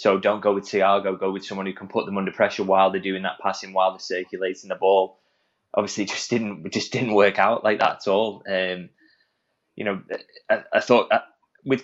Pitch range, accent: 95-105 Hz, British